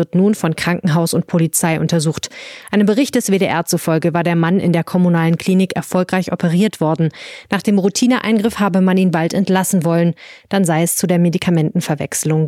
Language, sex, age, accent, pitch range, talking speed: German, female, 20-39, German, 160-195 Hz, 180 wpm